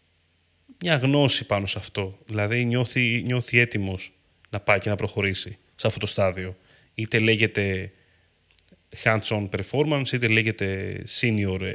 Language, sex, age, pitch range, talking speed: Greek, male, 30-49, 100-130 Hz, 130 wpm